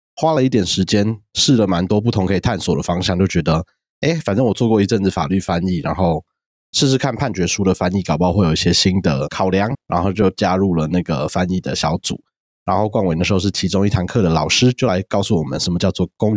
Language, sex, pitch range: Chinese, male, 85-105 Hz